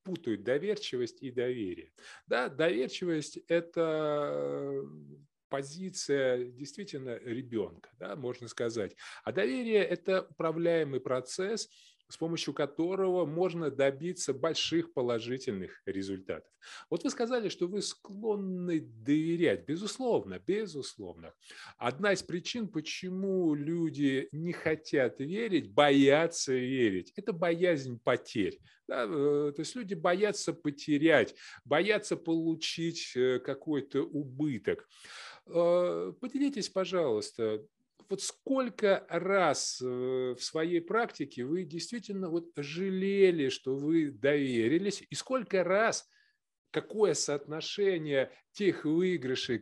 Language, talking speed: Russian, 100 wpm